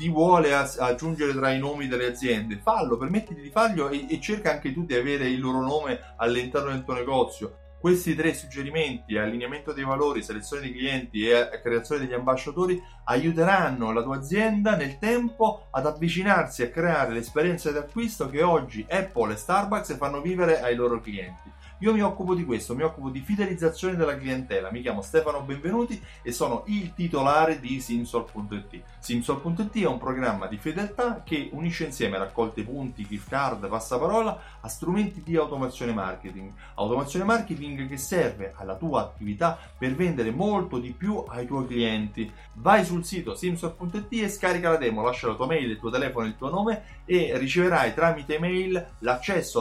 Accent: native